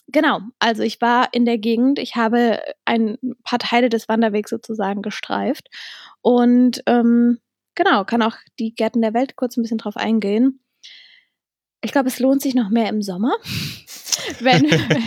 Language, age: German, 10-29